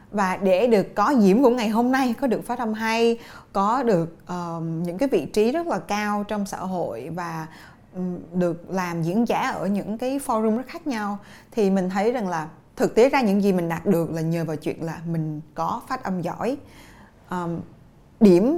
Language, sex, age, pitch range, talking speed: Vietnamese, female, 20-39, 180-250 Hz, 200 wpm